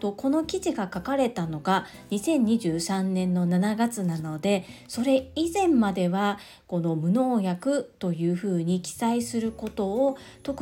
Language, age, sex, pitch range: Japanese, 40-59, female, 180-245 Hz